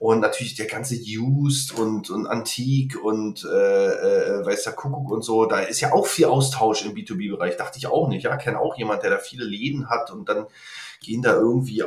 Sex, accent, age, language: male, German, 30-49, German